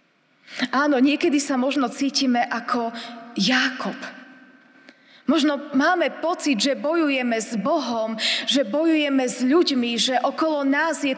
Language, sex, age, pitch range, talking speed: Slovak, female, 20-39, 235-300 Hz, 120 wpm